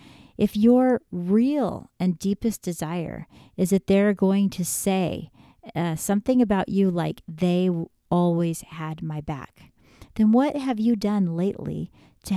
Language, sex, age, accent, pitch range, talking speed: English, female, 40-59, American, 165-215 Hz, 140 wpm